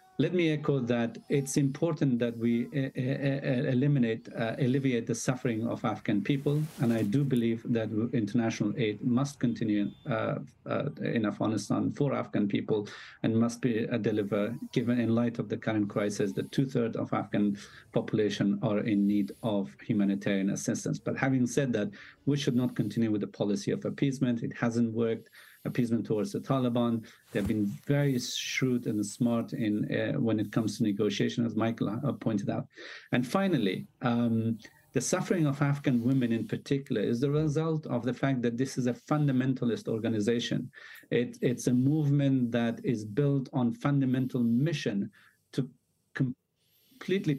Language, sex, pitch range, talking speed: English, male, 115-140 Hz, 160 wpm